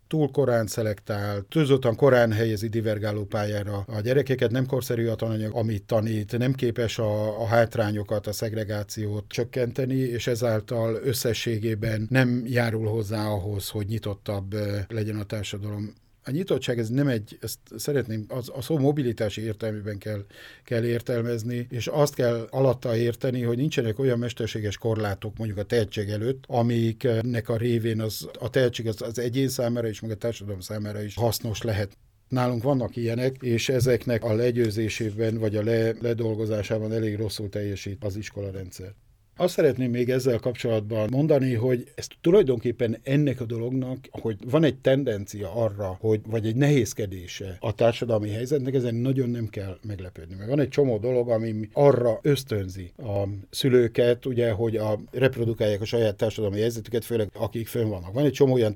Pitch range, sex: 110-125 Hz, male